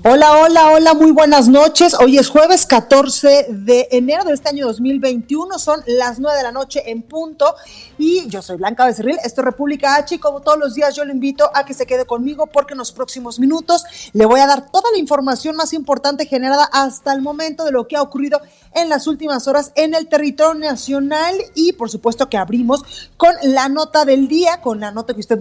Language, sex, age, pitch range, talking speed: Spanish, female, 30-49, 240-300 Hz, 215 wpm